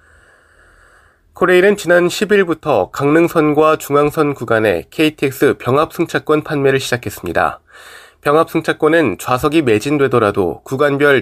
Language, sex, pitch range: Korean, male, 125-165 Hz